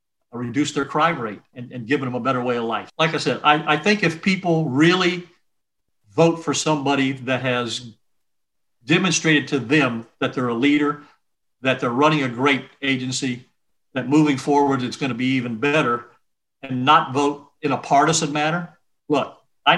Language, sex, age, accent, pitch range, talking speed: English, male, 50-69, American, 130-155 Hz, 175 wpm